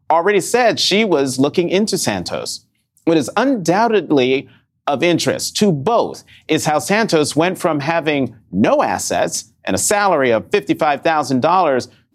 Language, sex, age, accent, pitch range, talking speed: English, male, 40-59, American, 125-185 Hz, 135 wpm